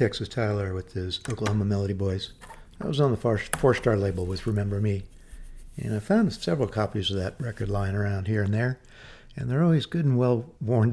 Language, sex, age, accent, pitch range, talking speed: English, male, 60-79, American, 95-115 Hz, 190 wpm